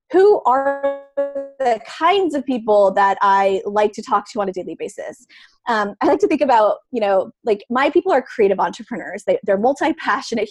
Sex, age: female, 20-39